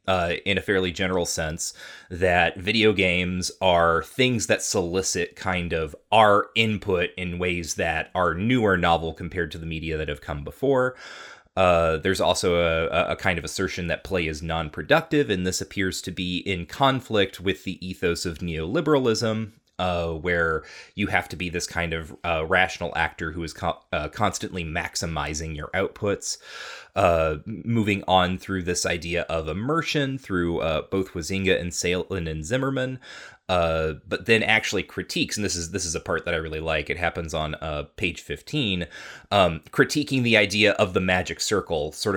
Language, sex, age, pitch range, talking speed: English, male, 30-49, 80-100 Hz, 175 wpm